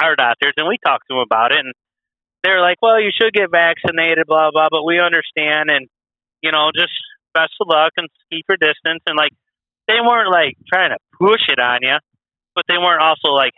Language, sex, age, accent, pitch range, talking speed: English, male, 30-49, American, 135-170 Hz, 215 wpm